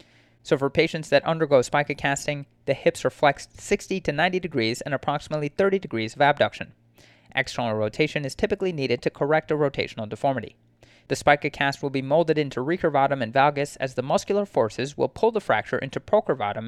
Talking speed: 180 wpm